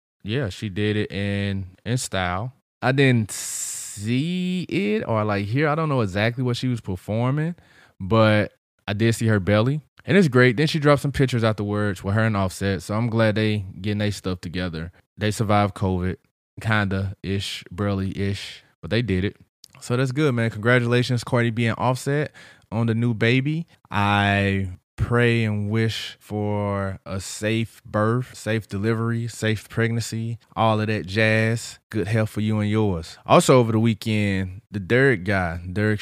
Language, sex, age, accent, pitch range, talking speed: English, male, 20-39, American, 100-120 Hz, 170 wpm